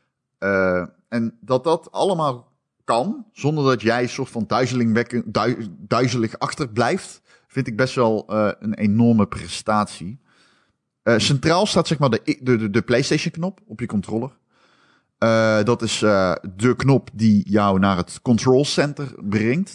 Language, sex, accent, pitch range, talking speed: Dutch, male, Dutch, 105-130 Hz, 150 wpm